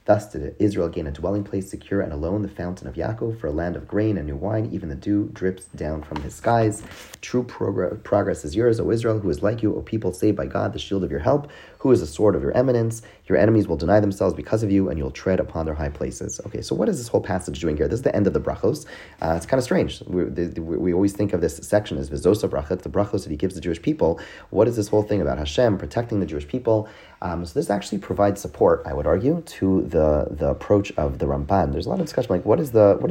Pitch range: 75-105 Hz